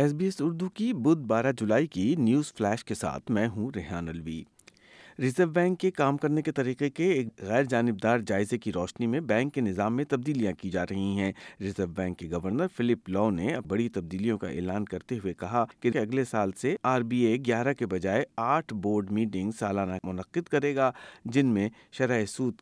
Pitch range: 100-125 Hz